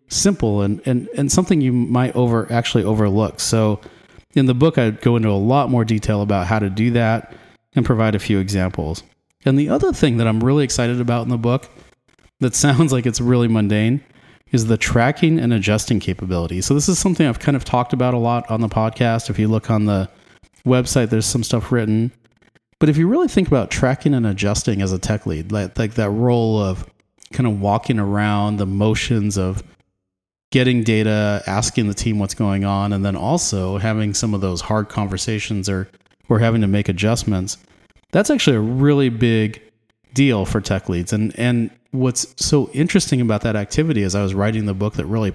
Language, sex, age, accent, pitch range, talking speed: English, male, 30-49, American, 100-130 Hz, 200 wpm